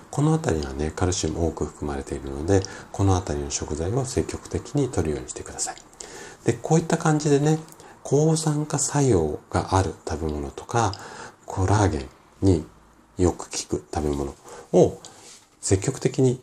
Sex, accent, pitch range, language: male, native, 85-130 Hz, Japanese